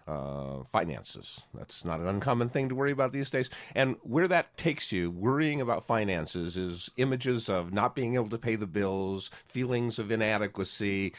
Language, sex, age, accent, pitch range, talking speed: English, male, 50-69, American, 100-130 Hz, 175 wpm